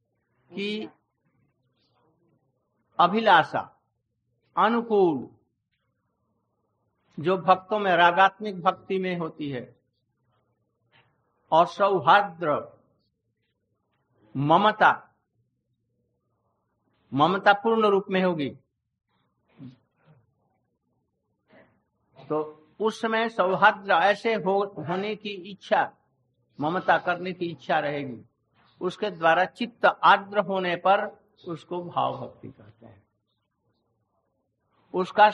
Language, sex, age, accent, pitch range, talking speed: Hindi, male, 60-79, native, 130-200 Hz, 75 wpm